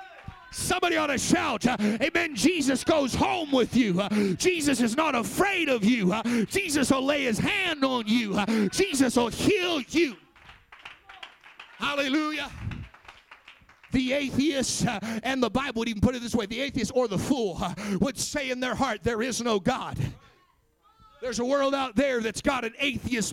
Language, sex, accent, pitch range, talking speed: English, male, American, 230-290 Hz, 175 wpm